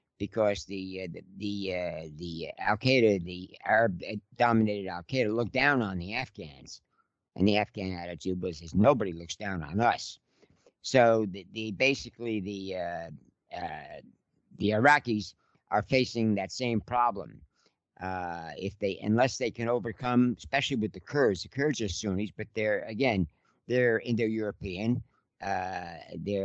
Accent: American